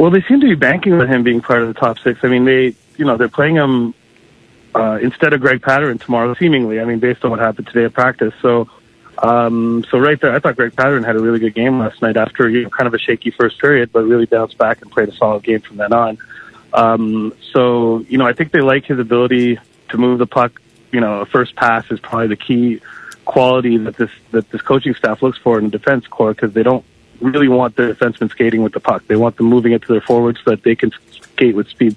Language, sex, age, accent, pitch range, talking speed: English, male, 30-49, American, 115-130 Hz, 255 wpm